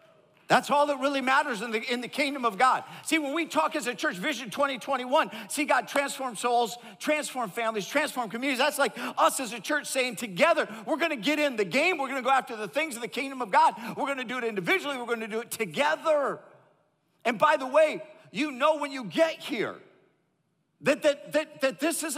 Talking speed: 225 wpm